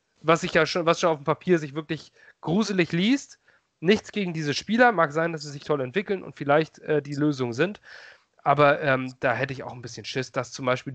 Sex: male